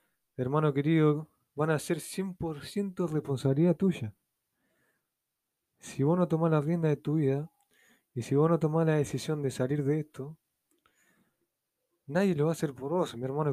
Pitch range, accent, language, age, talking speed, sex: 130-170 Hz, Argentinian, Spanish, 20-39, 165 wpm, male